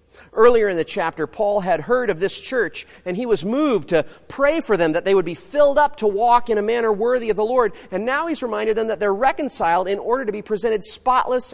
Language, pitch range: English, 125-200 Hz